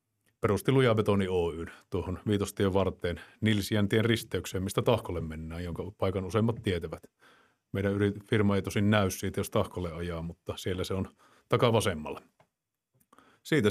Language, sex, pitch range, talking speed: Finnish, male, 95-110 Hz, 135 wpm